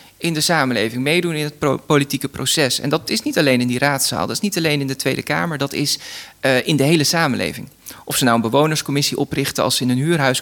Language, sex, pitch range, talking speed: Dutch, male, 130-155 Hz, 250 wpm